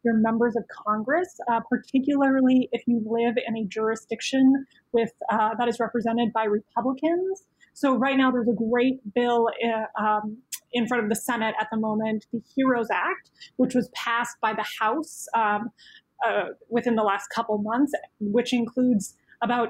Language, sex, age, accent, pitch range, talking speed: English, female, 30-49, American, 225-260 Hz, 170 wpm